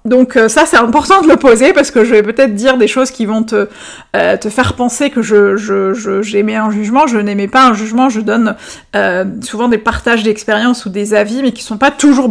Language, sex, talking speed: French, female, 225 wpm